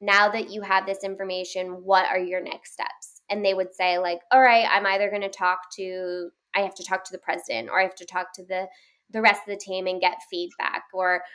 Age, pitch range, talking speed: 10-29, 180-205 Hz, 255 wpm